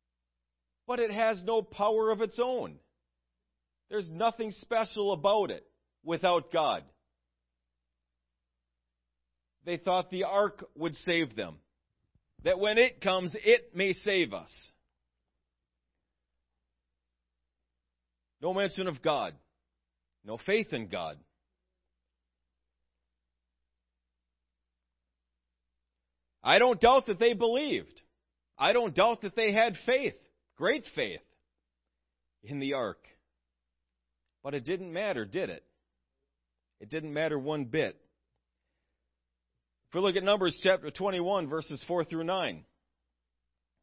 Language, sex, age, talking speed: English, male, 40-59, 105 wpm